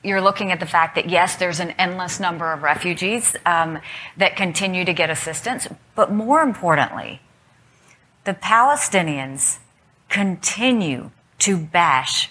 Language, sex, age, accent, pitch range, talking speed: English, female, 40-59, American, 165-205 Hz, 130 wpm